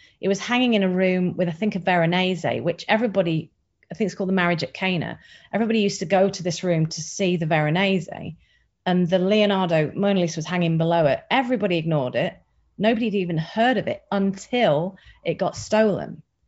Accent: British